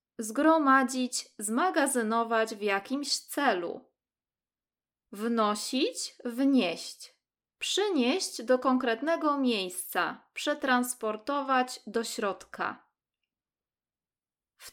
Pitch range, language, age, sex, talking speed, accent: 205-285 Hz, Polish, 20-39, female, 60 wpm, native